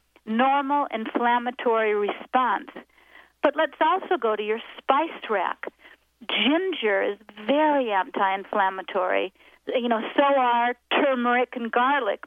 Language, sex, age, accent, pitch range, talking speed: English, female, 50-69, American, 225-290 Hz, 110 wpm